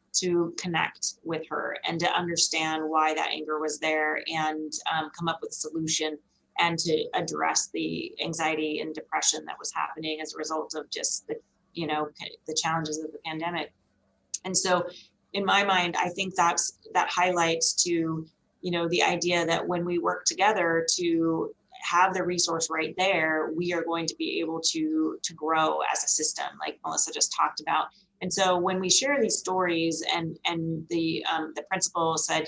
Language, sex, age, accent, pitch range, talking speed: English, female, 30-49, American, 160-180 Hz, 185 wpm